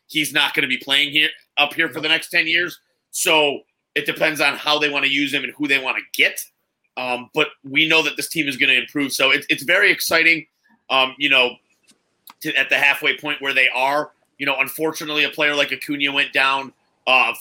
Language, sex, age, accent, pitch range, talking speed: English, male, 30-49, American, 130-150 Hz, 230 wpm